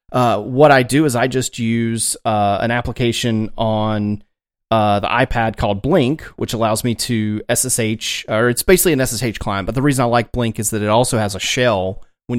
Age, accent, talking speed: 30-49, American, 205 wpm